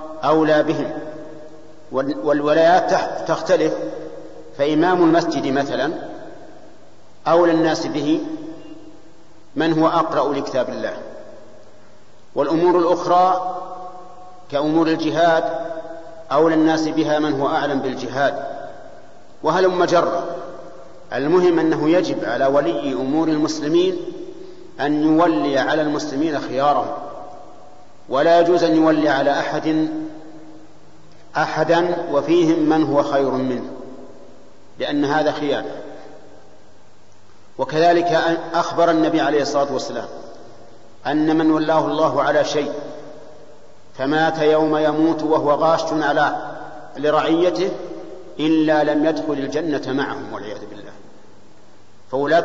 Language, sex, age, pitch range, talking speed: Arabic, male, 50-69, 150-175 Hz, 95 wpm